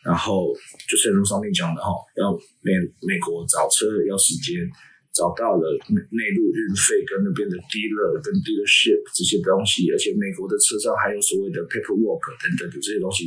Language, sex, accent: Chinese, male, native